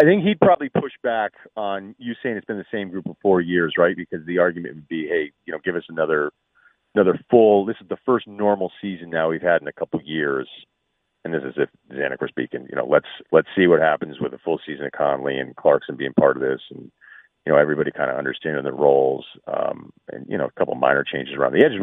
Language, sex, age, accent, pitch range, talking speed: English, male, 40-59, American, 85-125 Hz, 255 wpm